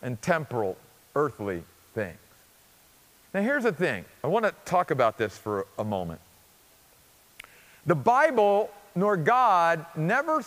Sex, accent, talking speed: male, American, 125 wpm